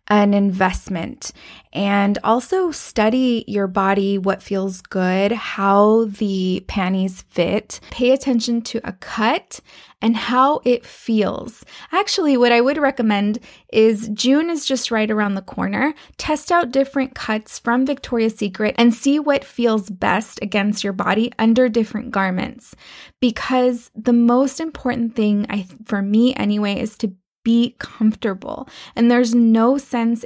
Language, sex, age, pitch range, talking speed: English, female, 20-39, 200-245 Hz, 140 wpm